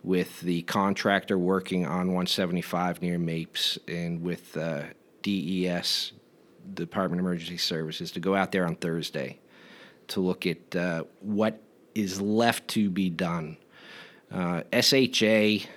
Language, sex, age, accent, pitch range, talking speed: English, male, 40-59, American, 90-100 Hz, 130 wpm